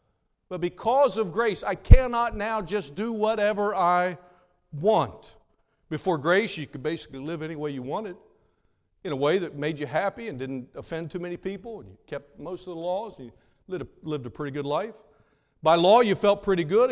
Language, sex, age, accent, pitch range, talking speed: English, male, 50-69, American, 130-200 Hz, 195 wpm